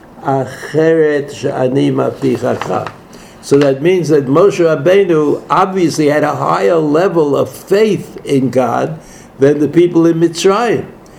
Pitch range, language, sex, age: 130-165 Hz, English, male, 60-79